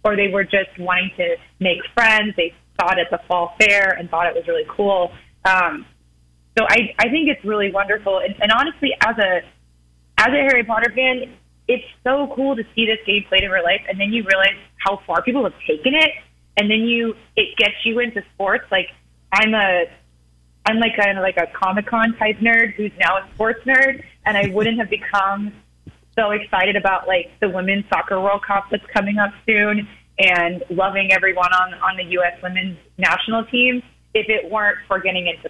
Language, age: English, 20-39